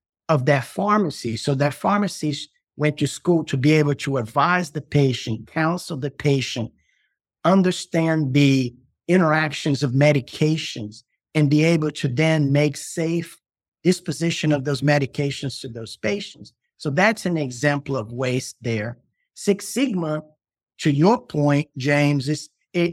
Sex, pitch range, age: male, 140-170 Hz, 50-69